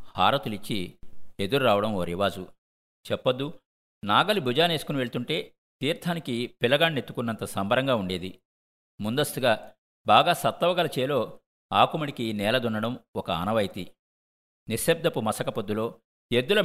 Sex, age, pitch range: male, 50-69, 95-140 Hz